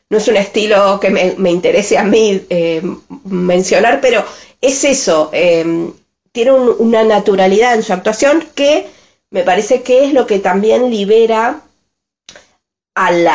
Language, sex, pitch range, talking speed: Spanish, female, 185-240 Hz, 145 wpm